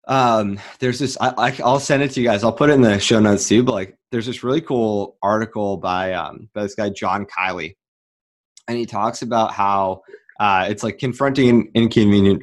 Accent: American